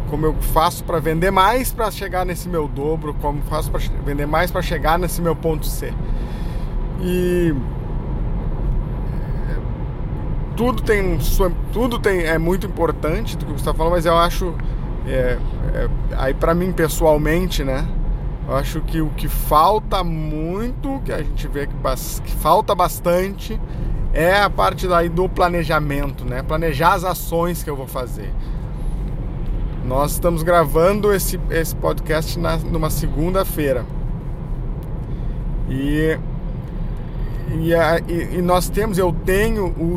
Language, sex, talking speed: Portuguese, male, 140 wpm